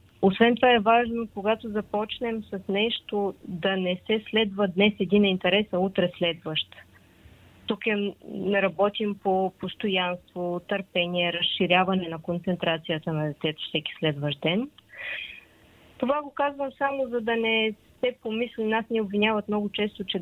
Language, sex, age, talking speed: Bulgarian, female, 20-39, 140 wpm